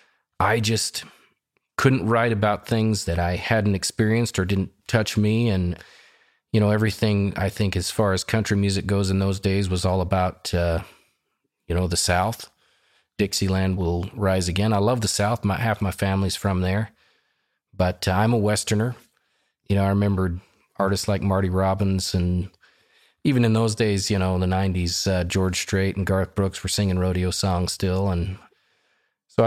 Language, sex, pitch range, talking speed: English, male, 95-110 Hz, 175 wpm